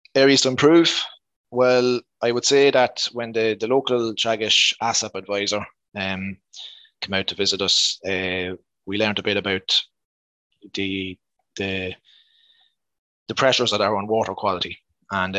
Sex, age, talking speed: male, 20-39, 145 wpm